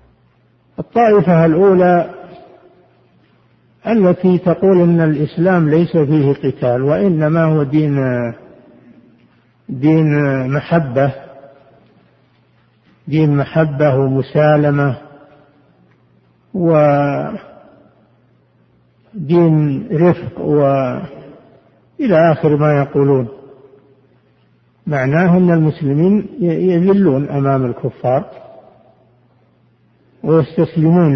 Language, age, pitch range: Arabic, 60-79, 135-170 Hz